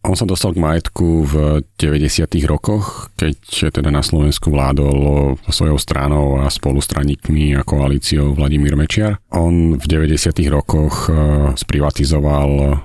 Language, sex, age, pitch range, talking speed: Slovak, male, 40-59, 75-85 Hz, 120 wpm